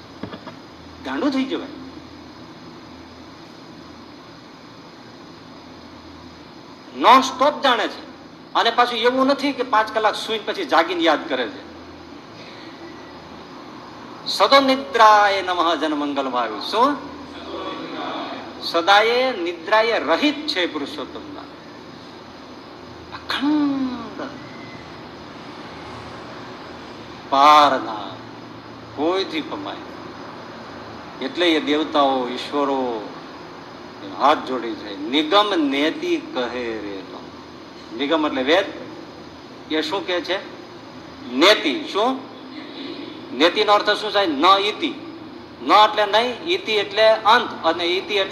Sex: male